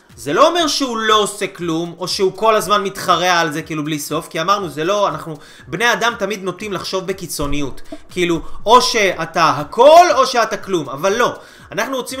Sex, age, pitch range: male, 30-49, 165-225 Hz